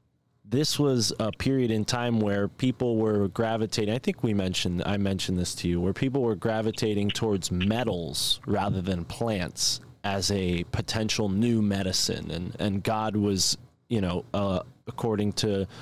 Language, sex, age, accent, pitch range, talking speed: English, male, 20-39, American, 95-115 Hz, 160 wpm